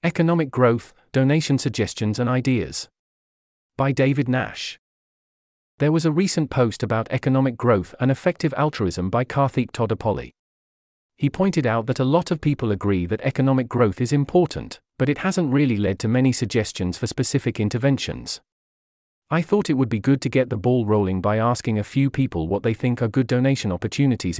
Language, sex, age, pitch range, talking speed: English, male, 40-59, 105-140 Hz, 175 wpm